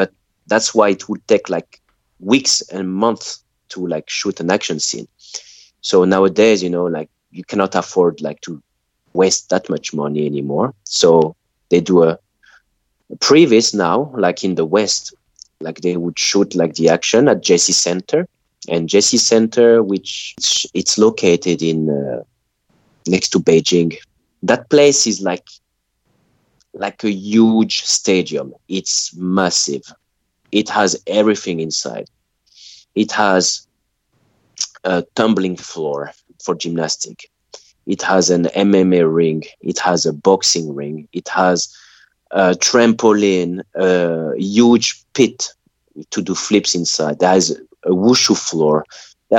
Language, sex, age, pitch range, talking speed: English, male, 30-49, 85-105 Hz, 135 wpm